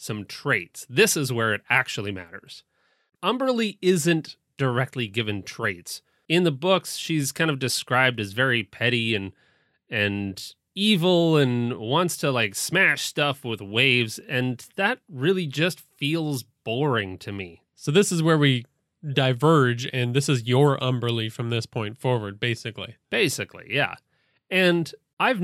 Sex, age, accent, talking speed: male, 30-49, American, 145 wpm